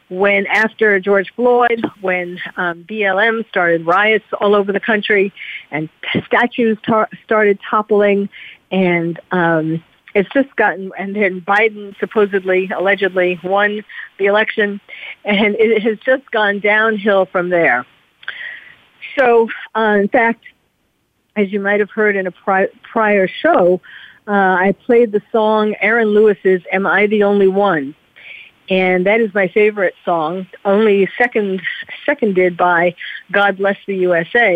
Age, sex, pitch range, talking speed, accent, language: 50-69, female, 185-220 Hz, 135 wpm, American, English